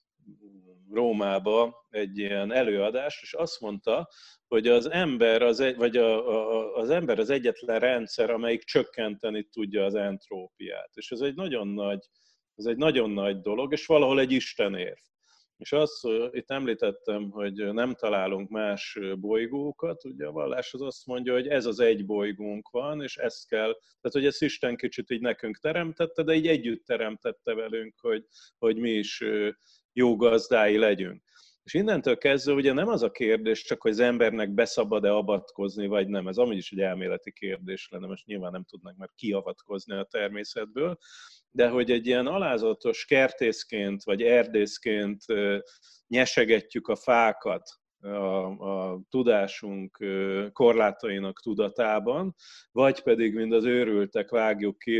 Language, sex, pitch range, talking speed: Hungarian, male, 100-130 Hz, 150 wpm